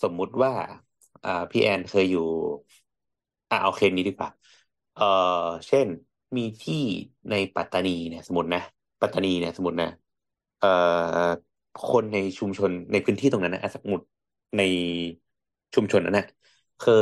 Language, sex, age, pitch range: Thai, male, 30-49, 85-105 Hz